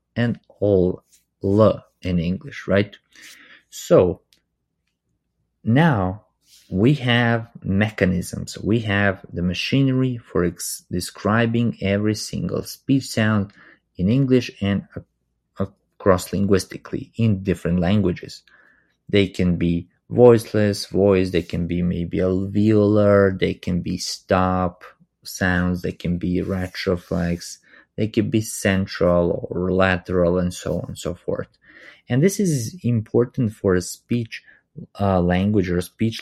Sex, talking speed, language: male, 120 wpm, English